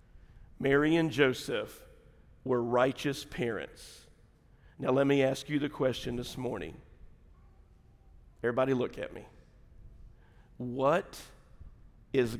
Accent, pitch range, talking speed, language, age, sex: American, 130-195 Hz, 100 wpm, English, 50-69, male